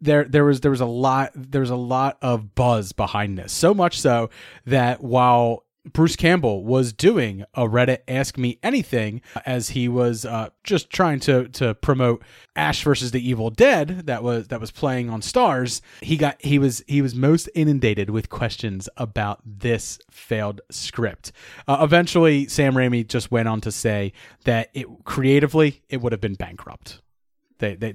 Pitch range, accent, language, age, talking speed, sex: 110-145 Hz, American, English, 30-49, 175 wpm, male